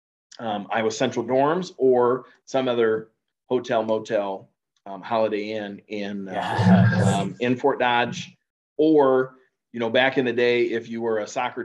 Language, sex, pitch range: English, male, 105-120 Hz